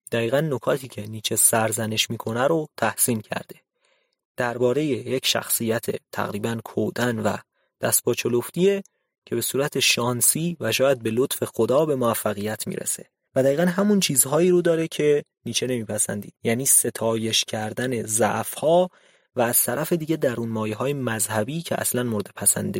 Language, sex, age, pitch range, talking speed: Persian, male, 30-49, 110-155 Hz, 145 wpm